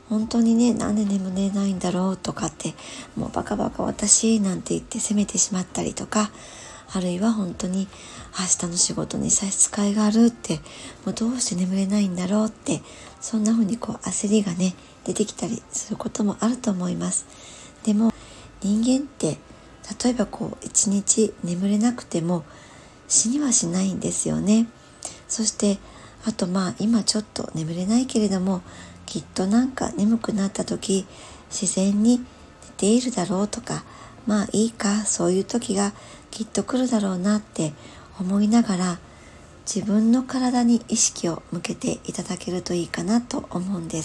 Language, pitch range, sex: Japanese, 185-225 Hz, male